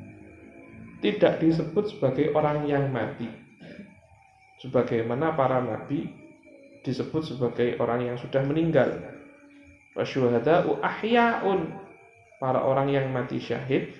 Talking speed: 85 wpm